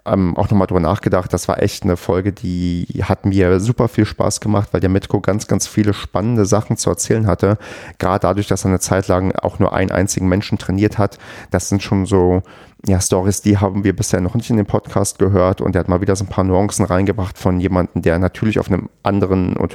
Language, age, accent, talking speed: German, 30-49, German, 230 wpm